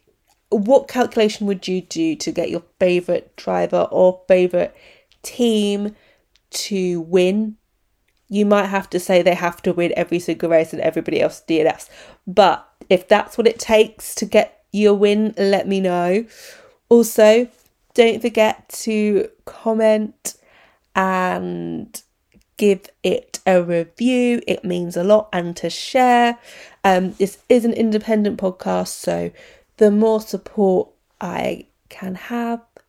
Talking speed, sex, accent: 135 wpm, female, British